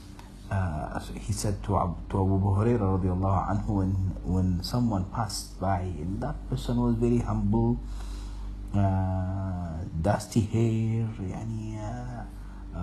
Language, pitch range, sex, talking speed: English, 90-105 Hz, male, 115 wpm